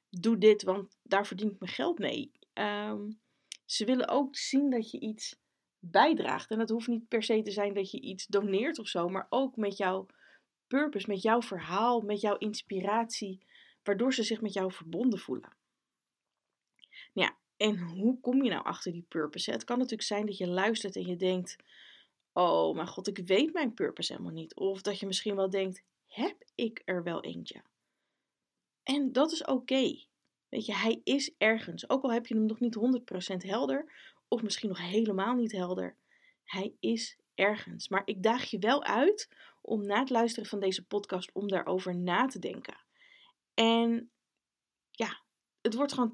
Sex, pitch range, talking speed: female, 195-250 Hz, 180 wpm